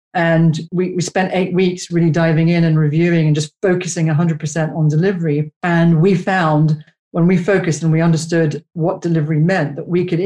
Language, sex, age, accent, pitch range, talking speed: English, female, 40-59, British, 150-175 Hz, 185 wpm